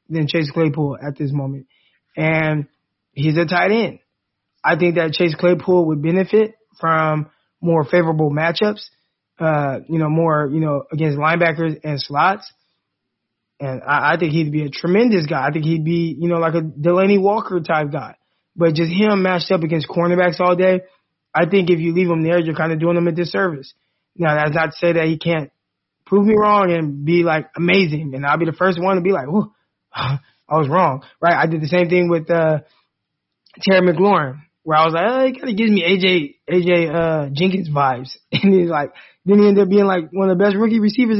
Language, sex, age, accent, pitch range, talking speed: English, male, 20-39, American, 155-185 Hz, 210 wpm